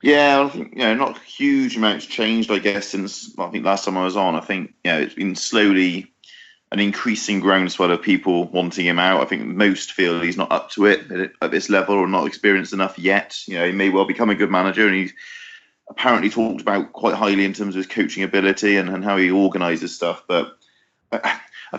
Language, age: English, 30-49